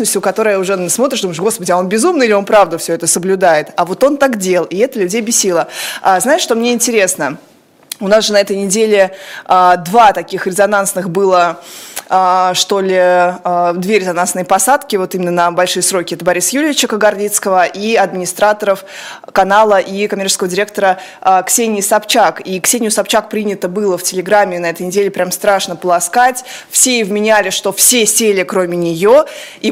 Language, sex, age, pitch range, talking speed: Russian, female, 20-39, 185-220 Hz, 175 wpm